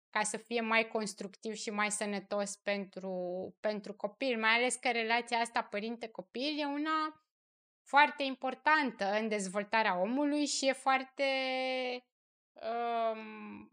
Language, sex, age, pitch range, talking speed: Romanian, female, 20-39, 210-280 Hz, 120 wpm